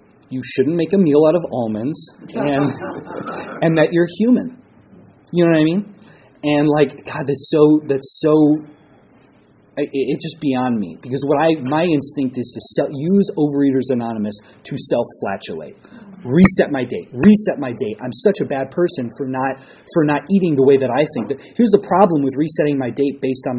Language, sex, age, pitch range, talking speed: English, male, 30-49, 120-155 Hz, 190 wpm